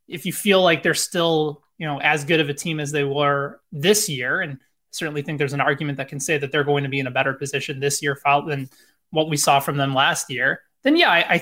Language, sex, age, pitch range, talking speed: English, male, 20-39, 145-180 Hz, 265 wpm